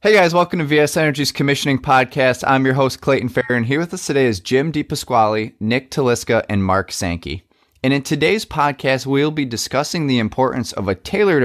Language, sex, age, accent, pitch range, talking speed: English, male, 20-39, American, 100-130 Hz, 195 wpm